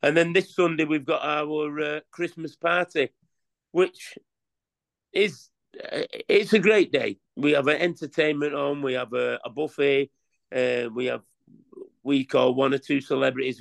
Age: 50-69